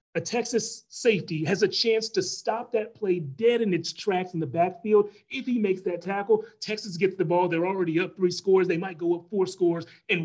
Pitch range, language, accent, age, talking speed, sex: 165-210 Hz, English, American, 30-49, 220 wpm, male